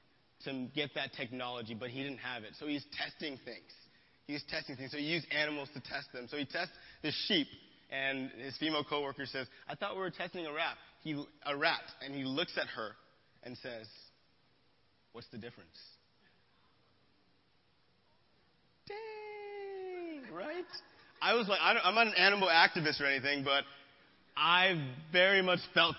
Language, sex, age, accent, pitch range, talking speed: English, male, 30-49, American, 140-185 Hz, 165 wpm